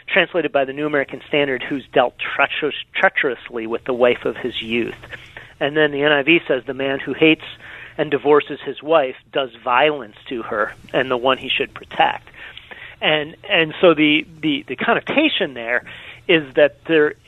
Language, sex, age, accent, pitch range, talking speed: English, male, 40-59, American, 130-155 Hz, 170 wpm